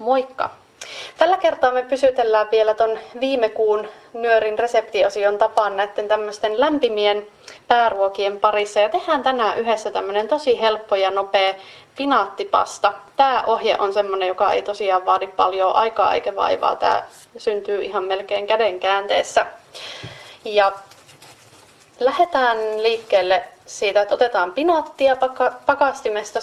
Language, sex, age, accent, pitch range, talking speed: Finnish, female, 30-49, native, 205-250 Hz, 115 wpm